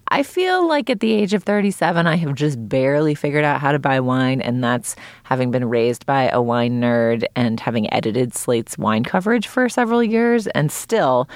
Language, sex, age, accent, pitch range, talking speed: English, female, 30-49, American, 125-180 Hz, 200 wpm